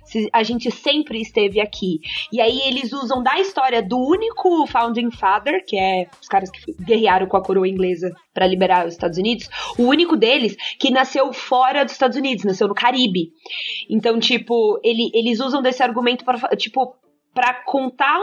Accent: Brazilian